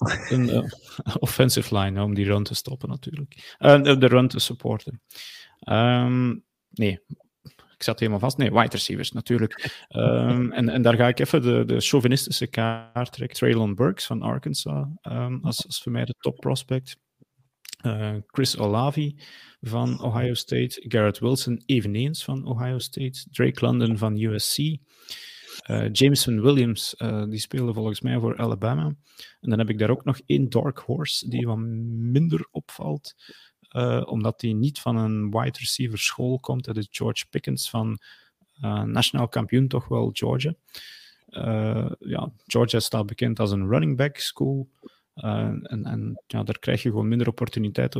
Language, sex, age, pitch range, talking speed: Dutch, male, 30-49, 110-130 Hz, 160 wpm